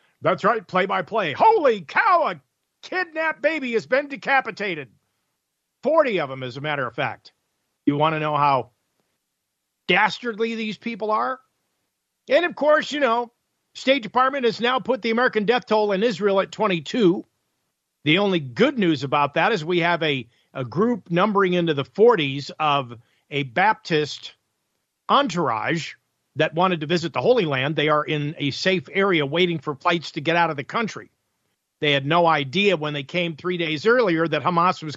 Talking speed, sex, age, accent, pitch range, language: 175 wpm, male, 50-69, American, 150-215 Hz, English